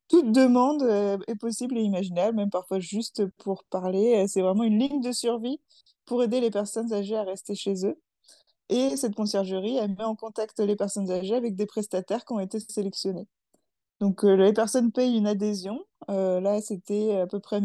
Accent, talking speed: French, 185 wpm